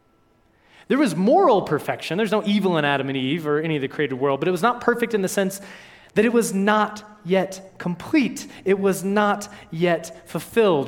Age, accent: 20-39, American